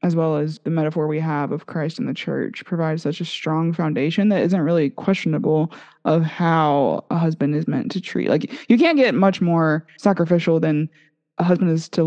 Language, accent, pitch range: English, American, 155-185 Hz